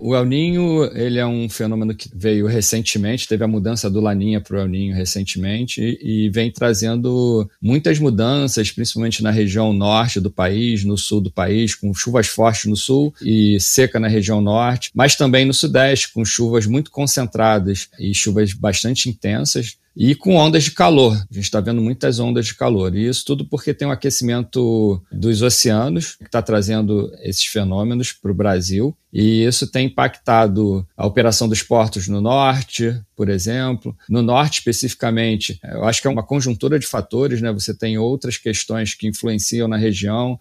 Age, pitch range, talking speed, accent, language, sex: 40-59, 105-125 Hz, 175 wpm, Brazilian, English, male